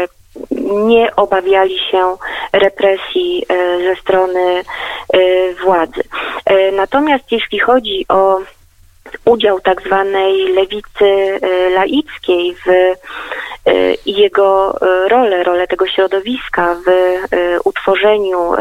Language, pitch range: Polish, 180-205 Hz